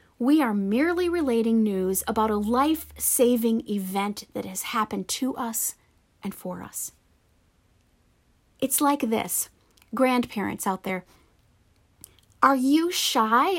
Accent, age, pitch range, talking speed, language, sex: American, 30-49, 200-275 Hz, 115 wpm, English, female